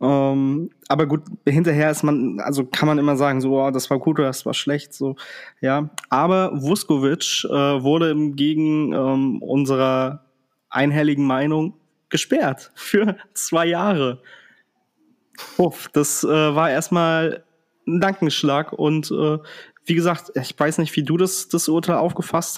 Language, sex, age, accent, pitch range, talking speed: German, male, 20-39, German, 145-185 Hz, 145 wpm